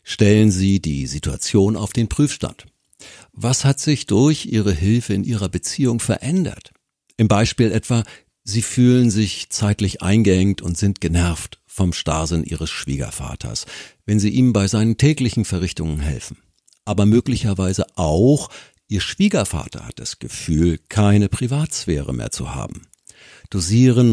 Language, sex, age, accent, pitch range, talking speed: German, male, 60-79, German, 90-120 Hz, 135 wpm